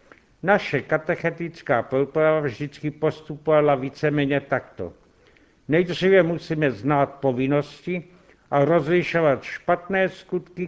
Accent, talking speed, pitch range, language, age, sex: native, 90 wpm, 140-170 Hz, Czech, 60-79, male